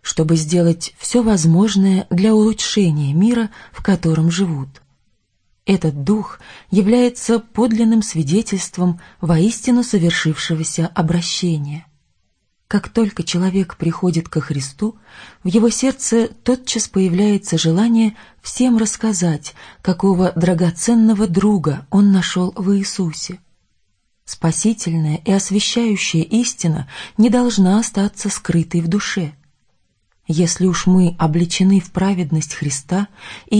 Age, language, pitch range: 30-49, Russian, 165-210 Hz